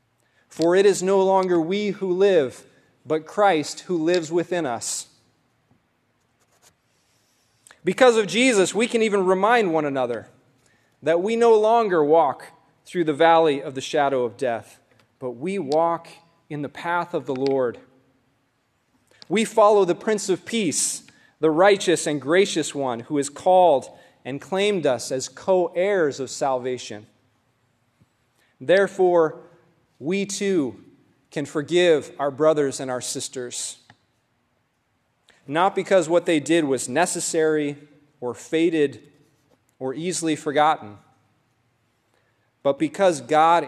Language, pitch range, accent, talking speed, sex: English, 130-175 Hz, American, 125 wpm, male